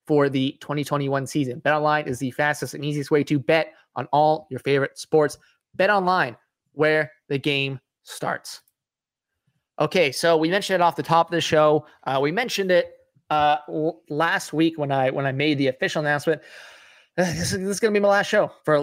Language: English